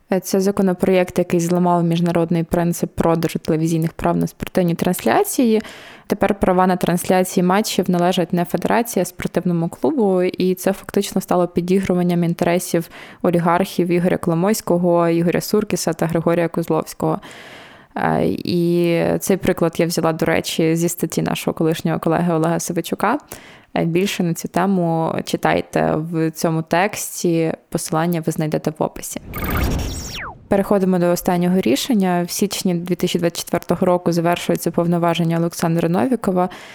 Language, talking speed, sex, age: Ukrainian, 125 wpm, female, 20-39